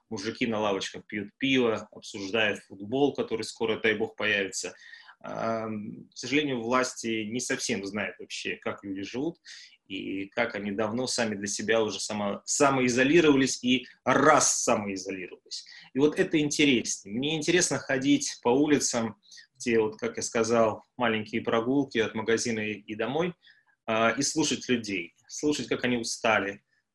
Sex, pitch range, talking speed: male, 110-135 Hz, 140 wpm